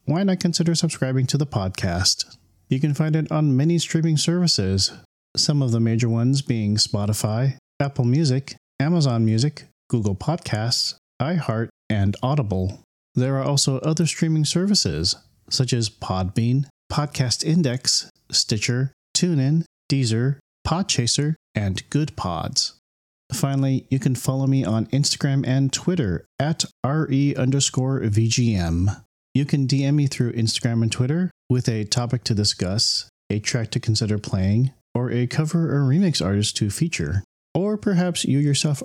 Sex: male